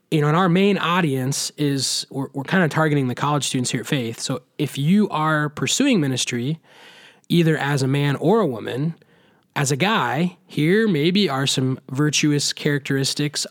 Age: 20-39